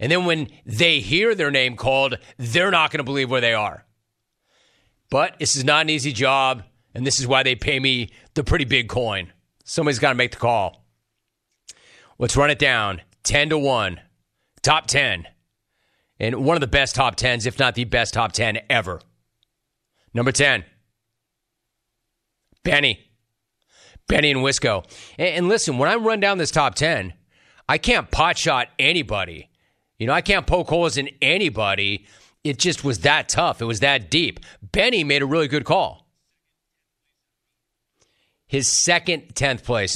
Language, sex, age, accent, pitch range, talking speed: English, male, 30-49, American, 115-155 Hz, 165 wpm